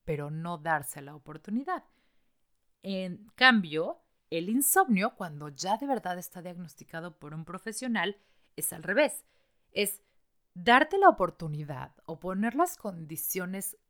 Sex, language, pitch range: female, Spanish, 160-210 Hz